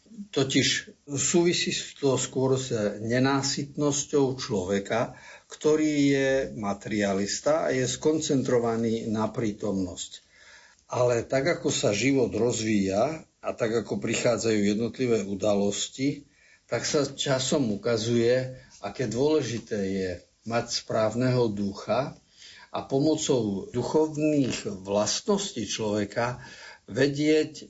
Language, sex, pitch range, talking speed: Slovak, male, 105-135 Hz, 95 wpm